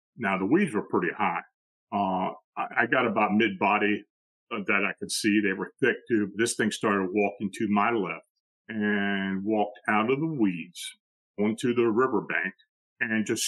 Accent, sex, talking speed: American, male, 165 wpm